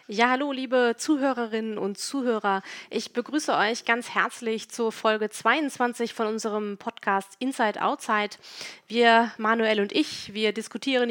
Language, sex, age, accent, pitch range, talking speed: German, female, 30-49, German, 205-245 Hz, 135 wpm